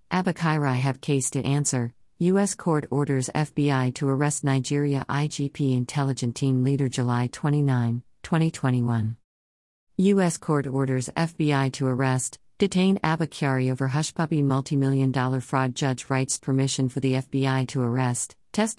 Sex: female